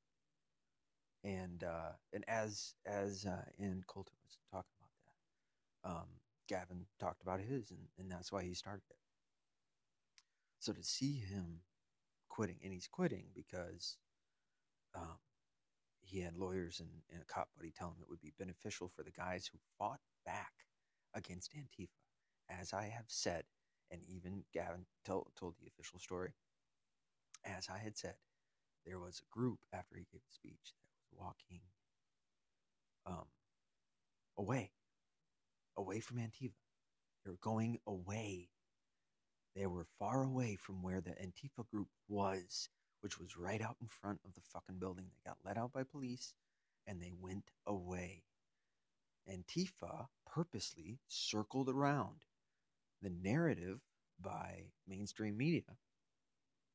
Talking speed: 140 wpm